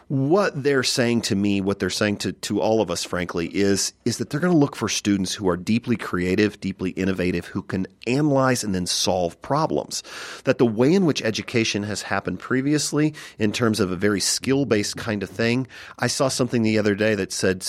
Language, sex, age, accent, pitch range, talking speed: English, male, 40-59, American, 95-125 Hz, 210 wpm